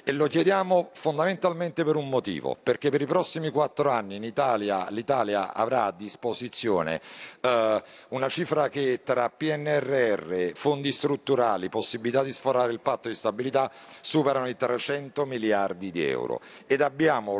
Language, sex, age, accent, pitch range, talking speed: Italian, male, 50-69, native, 115-150 Hz, 140 wpm